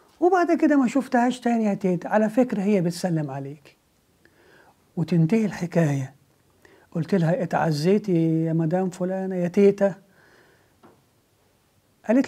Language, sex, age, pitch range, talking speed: English, male, 50-69, 160-205 Hz, 115 wpm